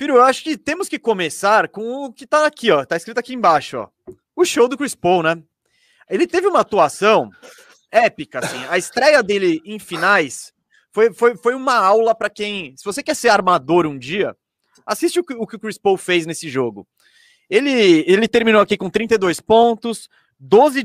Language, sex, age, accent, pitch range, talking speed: Portuguese, male, 20-39, Brazilian, 165-235 Hz, 195 wpm